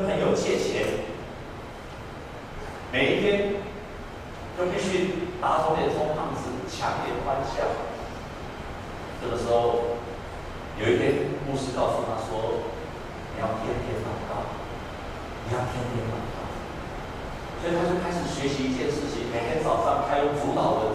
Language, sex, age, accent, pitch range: Chinese, male, 40-59, native, 125-210 Hz